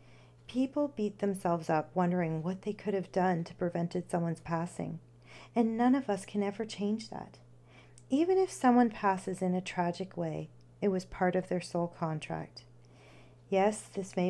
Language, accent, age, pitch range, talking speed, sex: English, American, 40-59, 160-210 Hz, 170 wpm, female